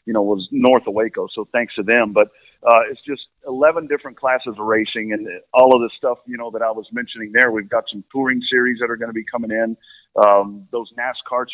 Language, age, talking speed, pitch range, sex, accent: English, 50-69, 240 wpm, 110-135 Hz, male, American